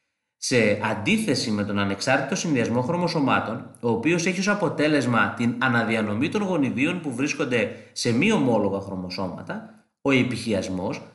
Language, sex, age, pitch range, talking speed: Greek, male, 30-49, 110-165 Hz, 130 wpm